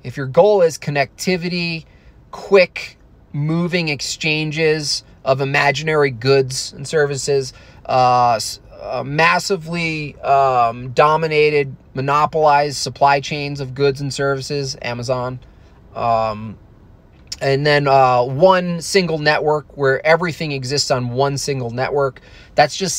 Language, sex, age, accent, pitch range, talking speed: English, male, 20-39, American, 130-165 Hz, 100 wpm